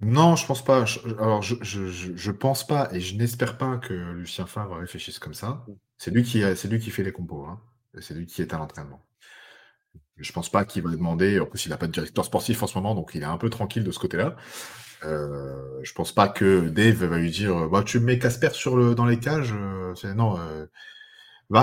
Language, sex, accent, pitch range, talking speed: French, male, French, 90-120 Hz, 220 wpm